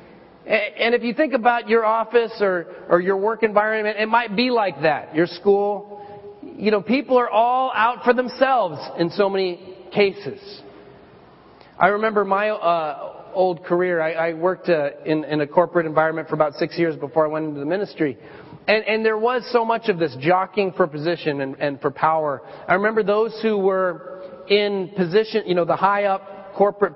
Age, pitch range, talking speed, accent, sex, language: 40-59, 170-220 Hz, 185 wpm, American, male, English